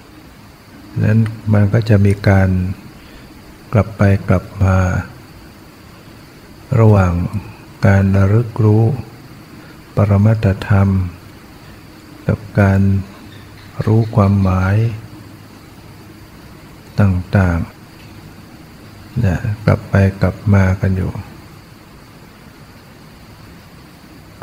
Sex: male